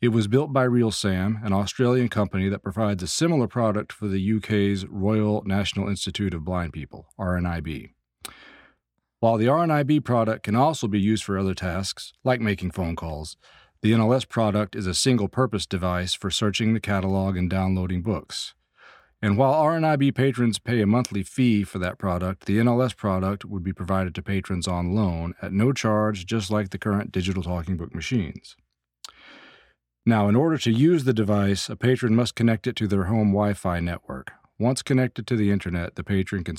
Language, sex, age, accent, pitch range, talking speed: English, male, 40-59, American, 90-115 Hz, 180 wpm